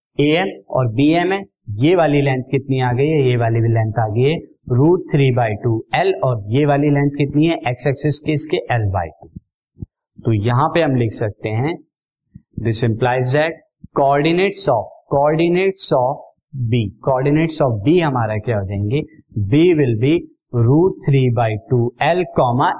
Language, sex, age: Hindi, male, 50-69